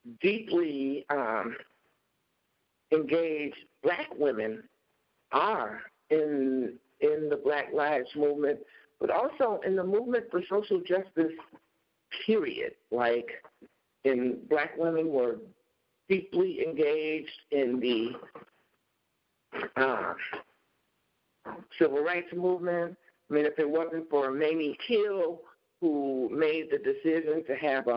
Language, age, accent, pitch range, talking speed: English, 60-79, American, 135-180 Hz, 105 wpm